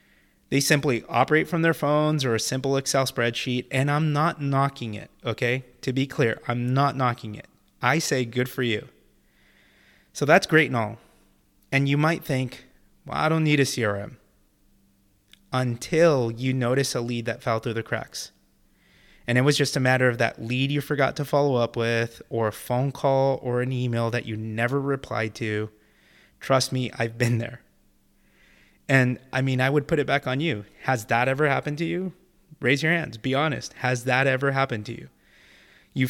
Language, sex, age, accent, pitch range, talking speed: English, male, 30-49, American, 115-140 Hz, 190 wpm